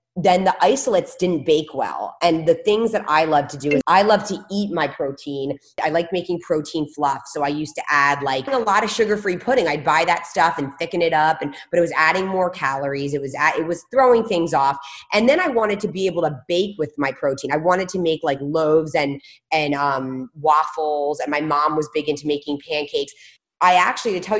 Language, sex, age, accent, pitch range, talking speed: English, female, 20-39, American, 145-185 Hz, 230 wpm